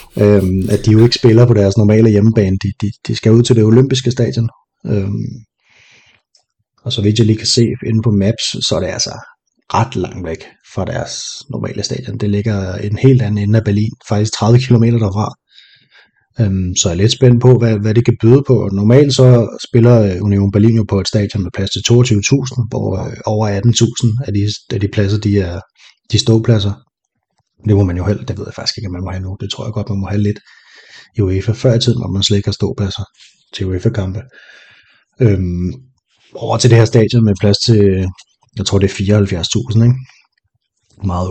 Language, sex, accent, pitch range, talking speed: Danish, male, native, 100-115 Hz, 200 wpm